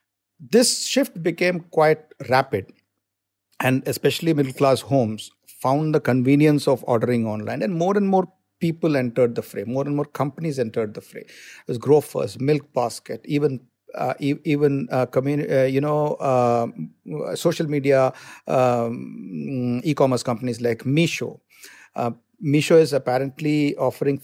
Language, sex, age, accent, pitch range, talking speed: English, male, 50-69, Indian, 130-155 Hz, 135 wpm